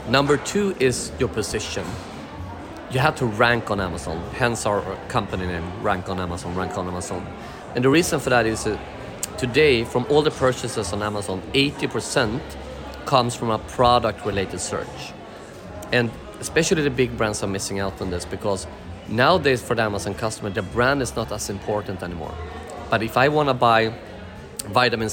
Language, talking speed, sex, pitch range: English, 170 wpm, male, 95-120 Hz